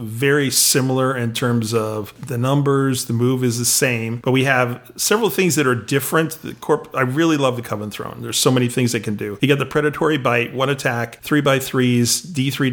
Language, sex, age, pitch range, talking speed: English, male, 40-59, 115-135 Hz, 210 wpm